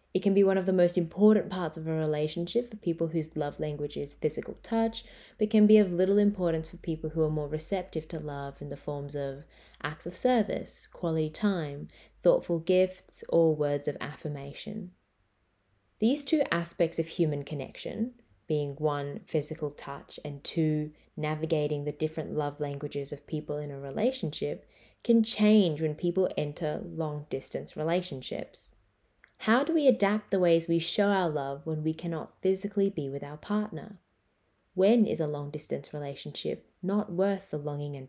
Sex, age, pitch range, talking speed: female, 20-39, 150-190 Hz, 170 wpm